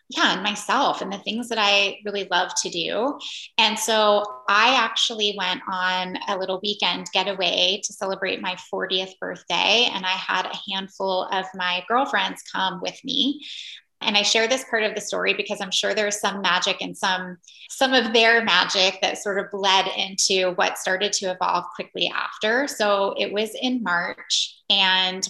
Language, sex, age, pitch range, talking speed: English, female, 20-39, 190-220 Hz, 180 wpm